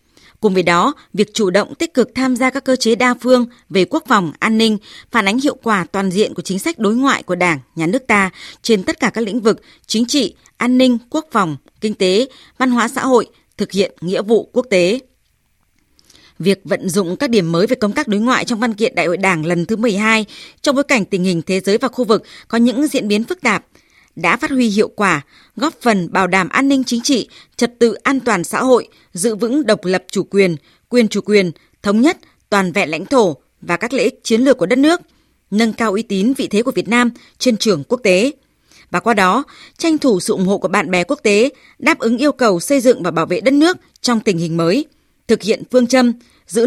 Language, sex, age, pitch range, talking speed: Vietnamese, female, 20-39, 195-255 Hz, 240 wpm